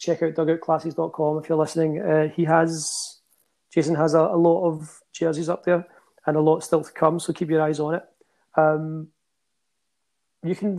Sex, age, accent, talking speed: male, 30-49, British, 185 wpm